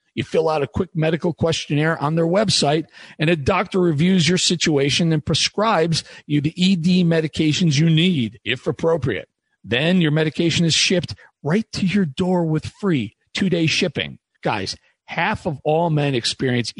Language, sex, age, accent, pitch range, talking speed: English, male, 40-59, American, 135-175 Hz, 160 wpm